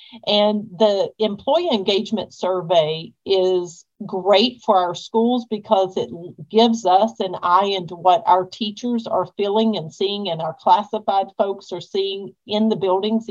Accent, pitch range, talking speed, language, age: American, 185-225 Hz, 150 wpm, English, 50-69